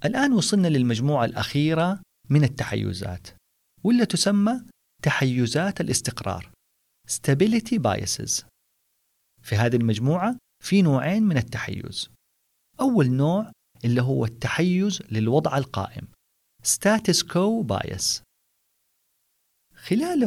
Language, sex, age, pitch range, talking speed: Arabic, male, 40-59, 110-180 Hz, 90 wpm